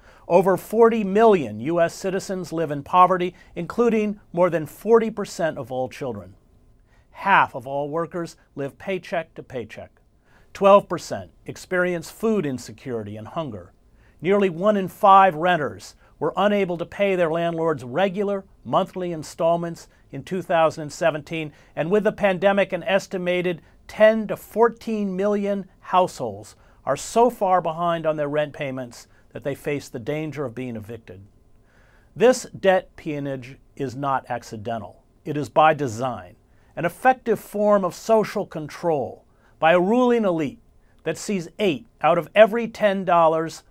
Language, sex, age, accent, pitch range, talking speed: English, male, 50-69, American, 130-195 Hz, 135 wpm